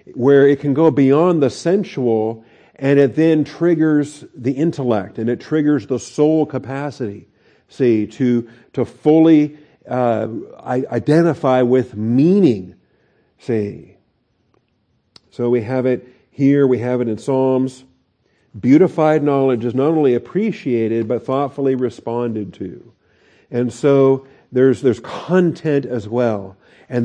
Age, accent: 50-69, American